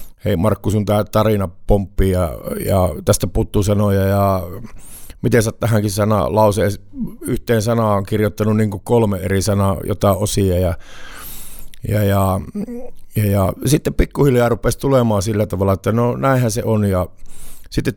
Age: 50-69